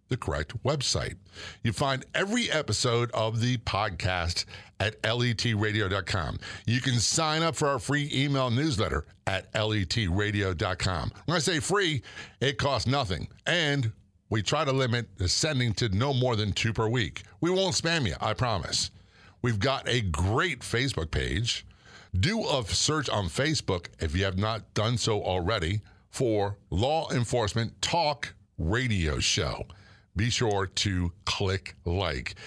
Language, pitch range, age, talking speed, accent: English, 100-130 Hz, 50-69, 145 wpm, American